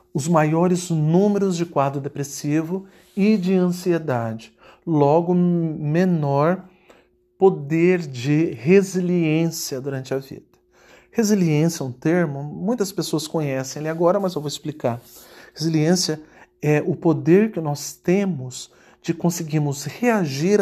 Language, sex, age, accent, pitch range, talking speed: Portuguese, male, 40-59, Brazilian, 145-185 Hz, 115 wpm